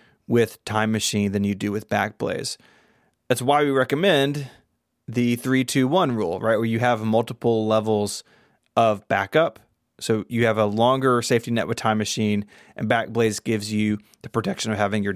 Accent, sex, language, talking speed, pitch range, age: American, male, English, 170 wpm, 105-125 Hz, 30-49